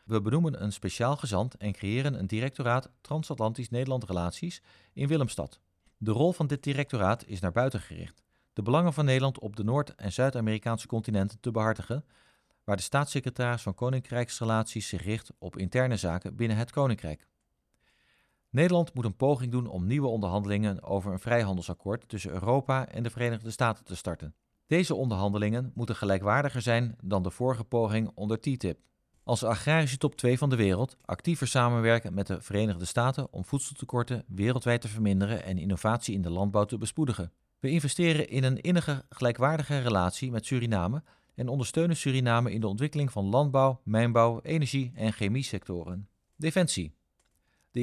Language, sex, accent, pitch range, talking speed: Dutch, male, Dutch, 105-135 Hz, 155 wpm